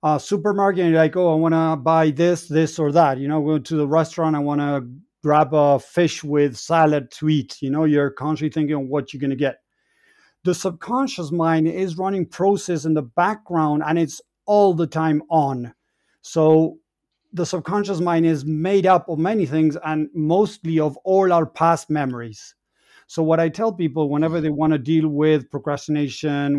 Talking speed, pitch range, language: 190 wpm, 145-170 Hz, English